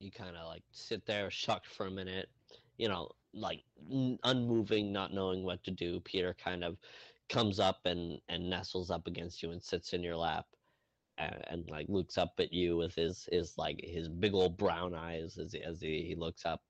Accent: American